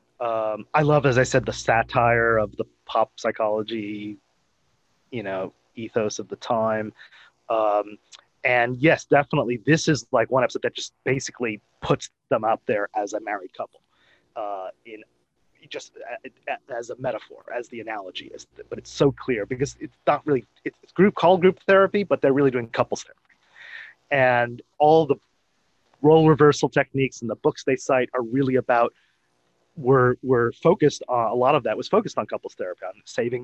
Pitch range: 115-150 Hz